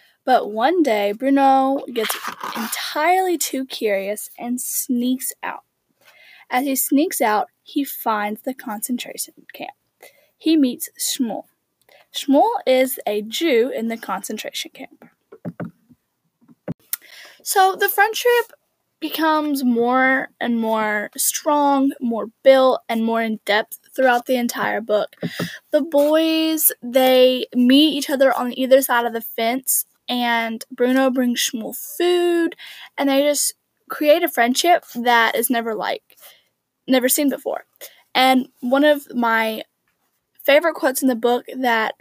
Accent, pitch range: American, 230-290 Hz